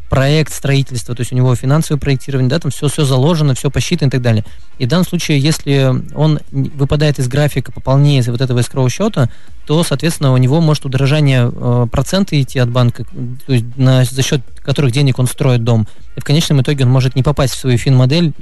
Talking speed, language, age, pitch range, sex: 210 wpm, Russian, 20-39, 120-140 Hz, male